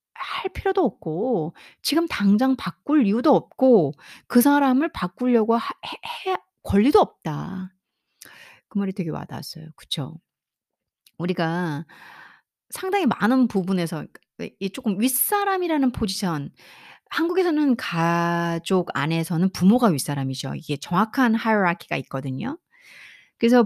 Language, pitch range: Korean, 175-275 Hz